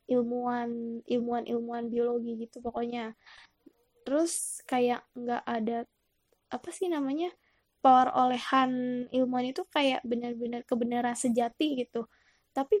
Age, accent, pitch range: 10-29, native, 235-265 Hz